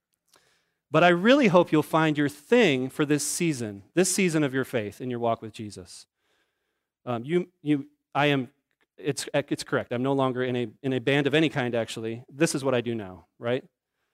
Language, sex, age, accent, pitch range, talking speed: English, male, 30-49, American, 125-170 Hz, 205 wpm